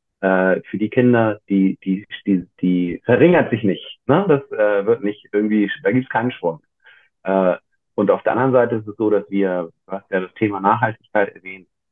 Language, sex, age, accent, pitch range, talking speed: German, male, 40-59, German, 95-130 Hz, 195 wpm